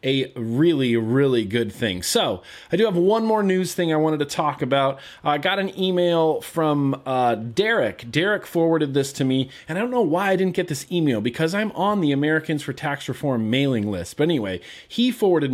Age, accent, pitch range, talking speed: 30-49, American, 125-175 Hz, 210 wpm